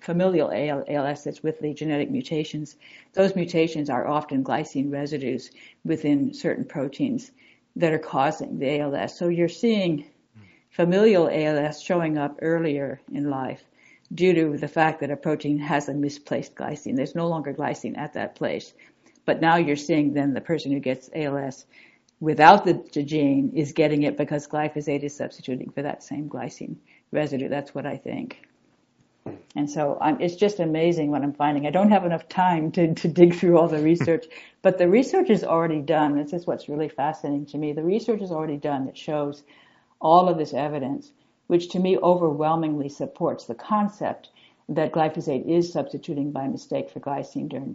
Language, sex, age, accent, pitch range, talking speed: English, female, 60-79, American, 145-170 Hz, 175 wpm